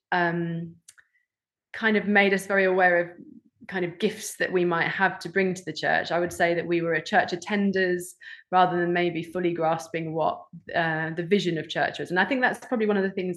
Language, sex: English, female